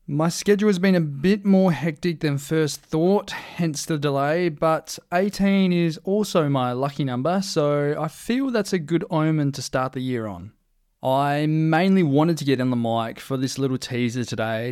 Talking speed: 190 wpm